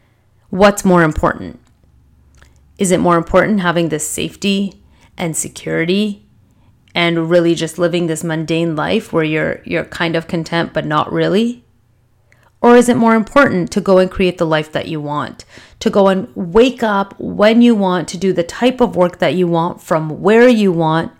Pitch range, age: 160-210 Hz, 30-49